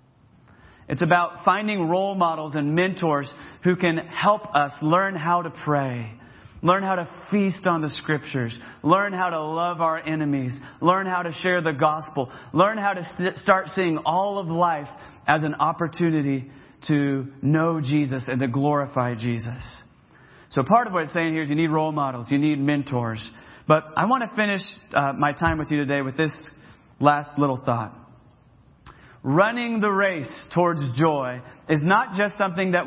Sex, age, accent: male, 30-49, American